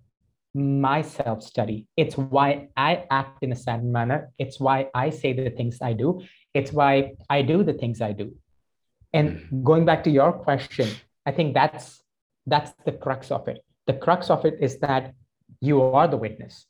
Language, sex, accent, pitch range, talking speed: English, male, Indian, 125-145 Hz, 180 wpm